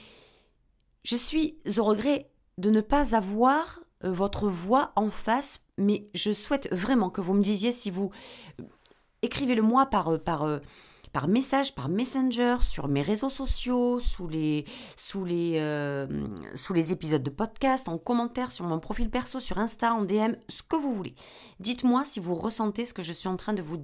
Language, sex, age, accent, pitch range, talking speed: French, female, 40-59, French, 170-240 Hz, 165 wpm